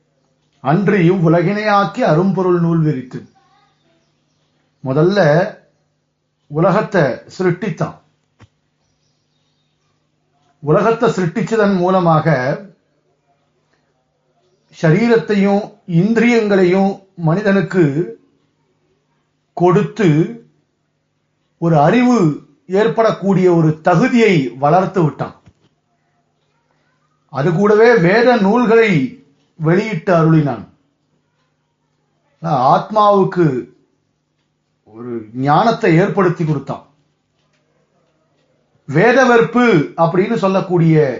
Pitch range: 160-210 Hz